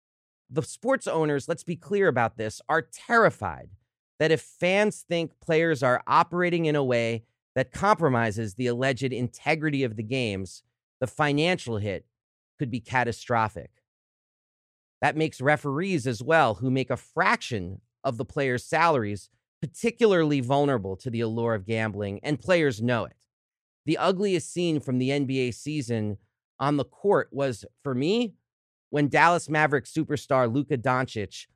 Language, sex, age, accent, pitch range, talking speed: English, male, 40-59, American, 115-155 Hz, 145 wpm